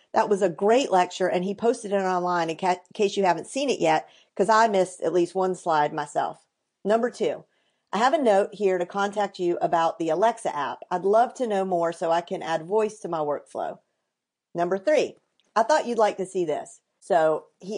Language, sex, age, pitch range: English, female, 40-59, 175-215 Hz